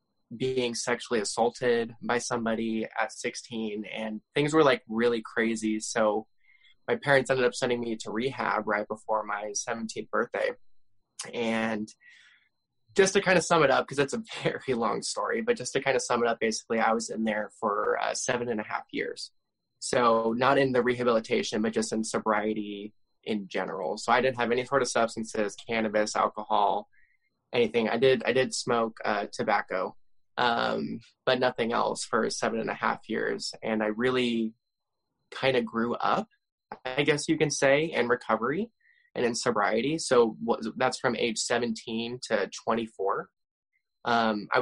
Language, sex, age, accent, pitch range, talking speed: English, male, 20-39, American, 110-130 Hz, 170 wpm